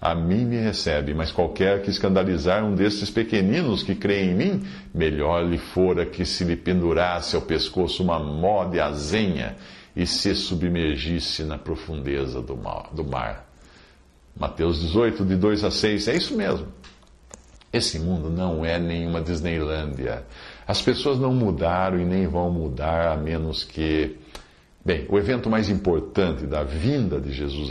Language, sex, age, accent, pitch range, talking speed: Portuguese, male, 60-79, Brazilian, 80-105 Hz, 150 wpm